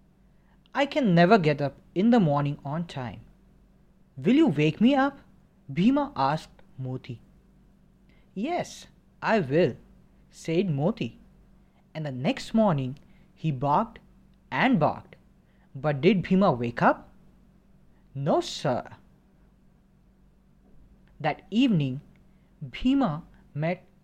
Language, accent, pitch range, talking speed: English, Indian, 145-205 Hz, 105 wpm